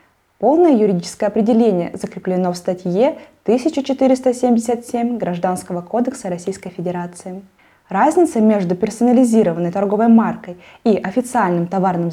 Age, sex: 20-39, female